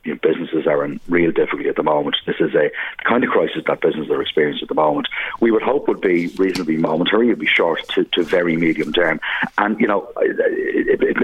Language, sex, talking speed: English, male, 235 wpm